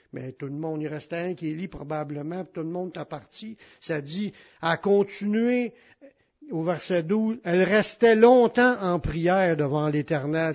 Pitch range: 150-195 Hz